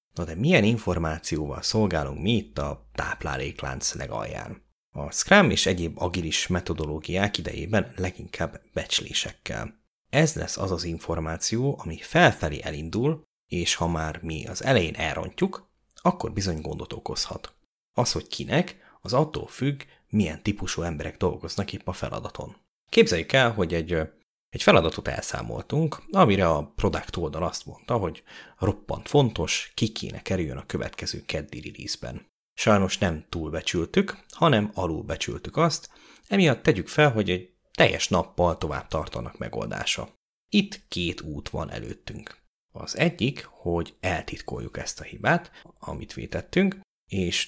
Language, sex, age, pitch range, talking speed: Hungarian, male, 30-49, 80-110 Hz, 135 wpm